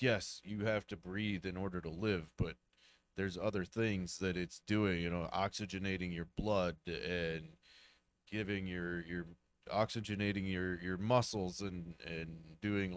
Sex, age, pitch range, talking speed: male, 30-49, 80-110 Hz, 150 wpm